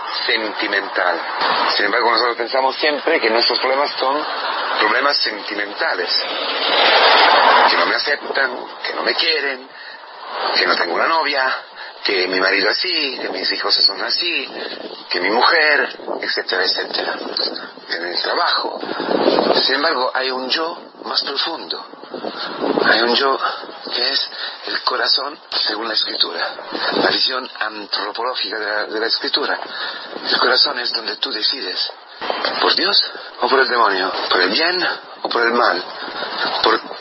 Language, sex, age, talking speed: Spanish, male, 40-59, 140 wpm